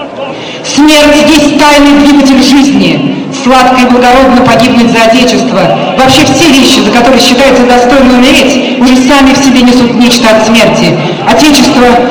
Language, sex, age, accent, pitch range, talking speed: Russian, female, 40-59, native, 265-295 Hz, 145 wpm